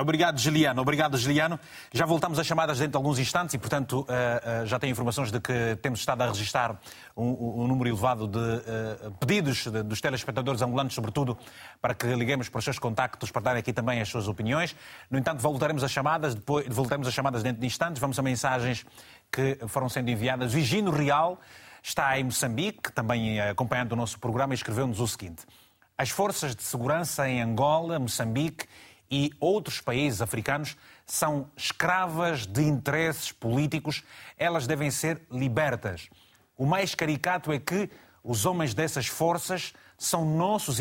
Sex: male